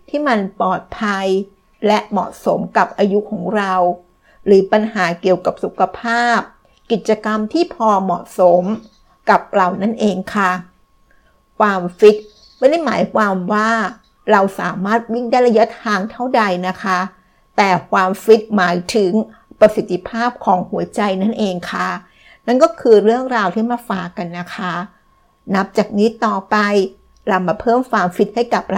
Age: 60-79